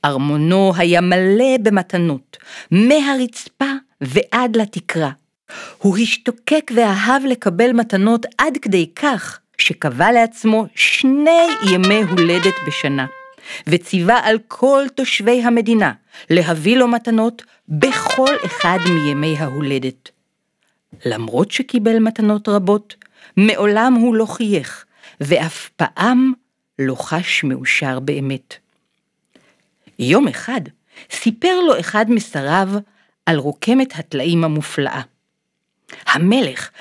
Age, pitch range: 50-69, 155-245 Hz